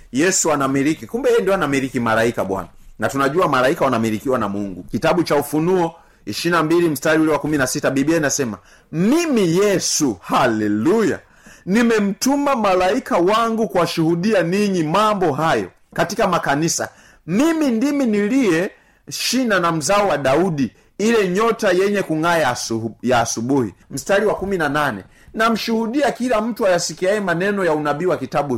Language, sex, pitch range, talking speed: Swahili, male, 135-195 Hz, 130 wpm